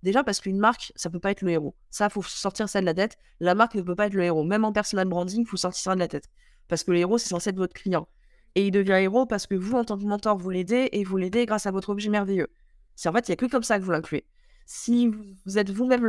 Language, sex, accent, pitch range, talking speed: French, female, French, 185-230 Hz, 315 wpm